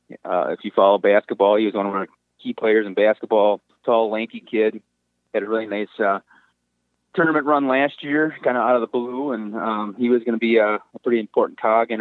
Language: English